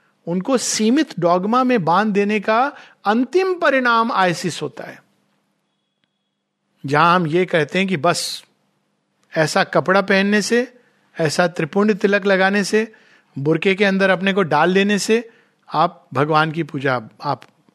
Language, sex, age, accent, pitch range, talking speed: Hindi, male, 50-69, native, 180-265 Hz, 140 wpm